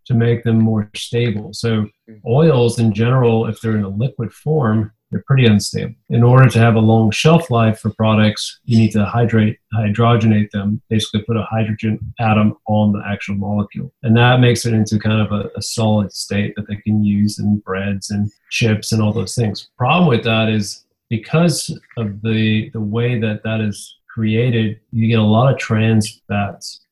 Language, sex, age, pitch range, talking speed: English, male, 40-59, 105-120 Hz, 190 wpm